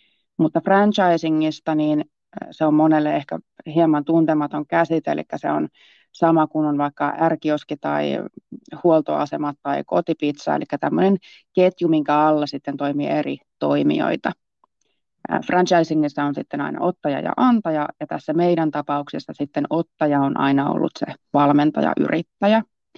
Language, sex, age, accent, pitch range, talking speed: Finnish, female, 30-49, native, 145-175 Hz, 130 wpm